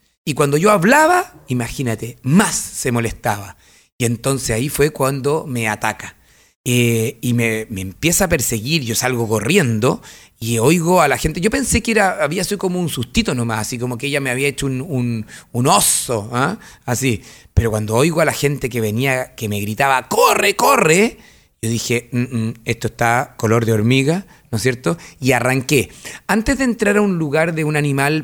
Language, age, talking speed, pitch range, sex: Spanish, 30-49, 185 wpm, 120-160 Hz, male